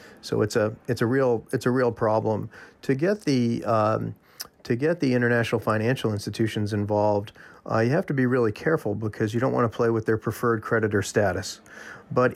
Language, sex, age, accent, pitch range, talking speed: English, male, 40-59, American, 105-125 Hz, 195 wpm